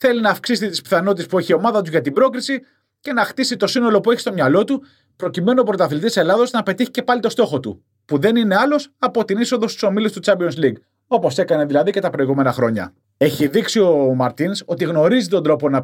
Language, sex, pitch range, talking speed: Greek, male, 150-220 Hz, 235 wpm